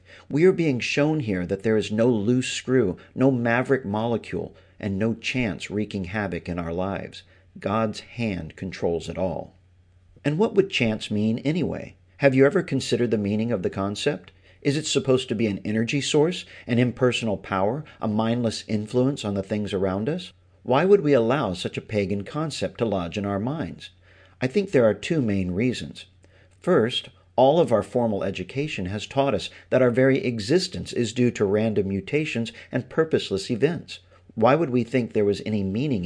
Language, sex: English, male